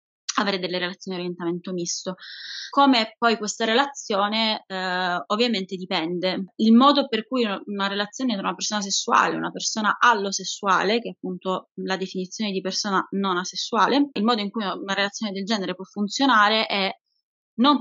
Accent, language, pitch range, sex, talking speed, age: native, Italian, 185-225 Hz, female, 160 wpm, 20-39